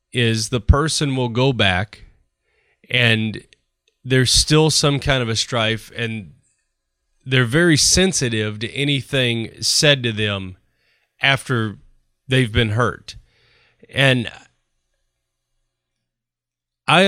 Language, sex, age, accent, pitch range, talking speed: English, male, 30-49, American, 110-135 Hz, 100 wpm